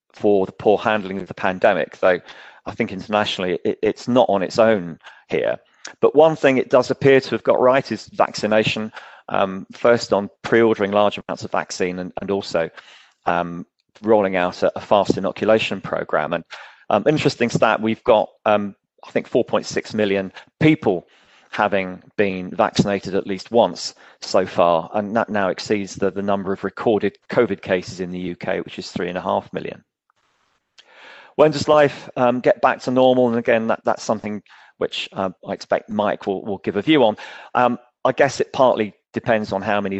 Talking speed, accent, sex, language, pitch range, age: 180 wpm, British, male, English, 100-120 Hz, 40-59